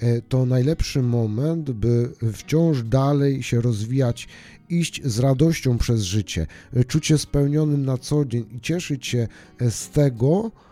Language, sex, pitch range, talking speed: Polish, male, 115-140 Hz, 135 wpm